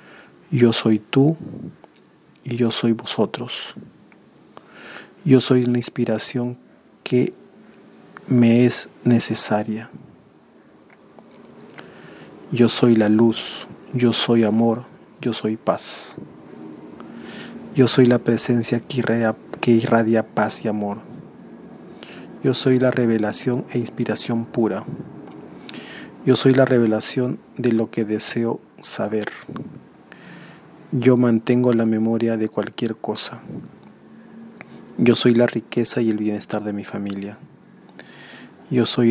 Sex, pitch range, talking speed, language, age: male, 110-125 Hz, 105 wpm, Spanish, 40-59